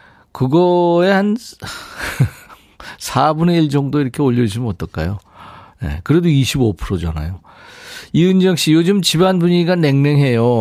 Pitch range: 105-150 Hz